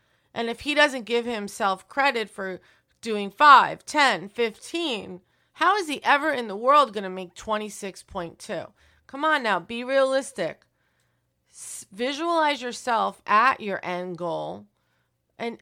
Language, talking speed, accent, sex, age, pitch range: English, 135 wpm, American, female, 30-49, 185-245 Hz